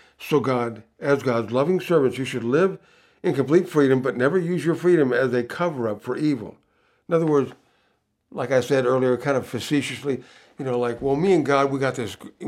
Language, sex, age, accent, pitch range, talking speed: English, male, 60-79, American, 130-185 Hz, 200 wpm